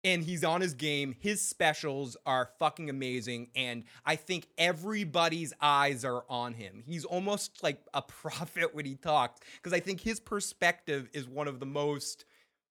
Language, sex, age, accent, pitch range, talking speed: English, male, 20-39, American, 135-185 Hz, 170 wpm